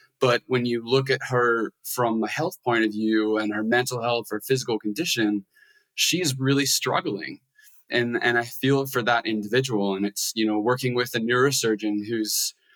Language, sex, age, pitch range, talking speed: English, male, 20-39, 110-130 Hz, 180 wpm